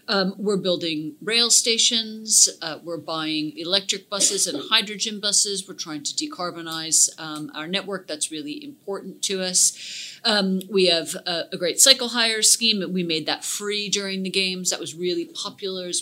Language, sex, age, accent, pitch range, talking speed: English, female, 50-69, American, 170-200 Hz, 170 wpm